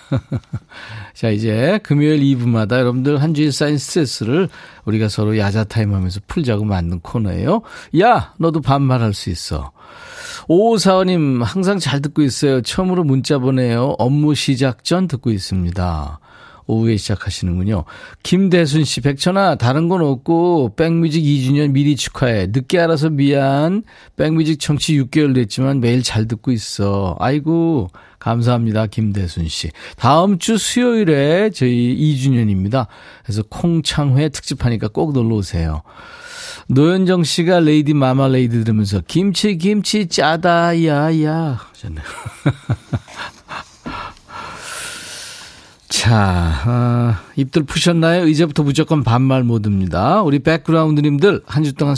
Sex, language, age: male, Korean, 40-59